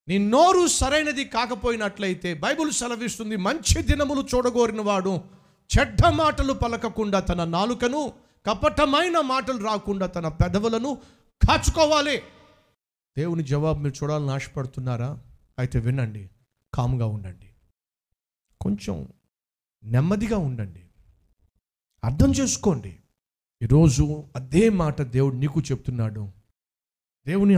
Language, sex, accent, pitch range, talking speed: Telugu, male, native, 120-195 Hz, 90 wpm